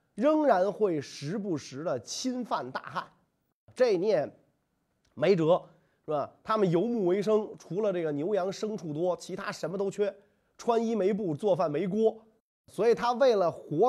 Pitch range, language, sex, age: 155-230 Hz, Chinese, male, 30-49